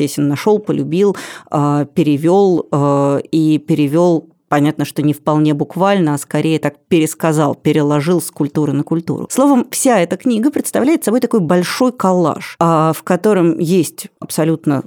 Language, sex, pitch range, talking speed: Russian, female, 145-185 Hz, 135 wpm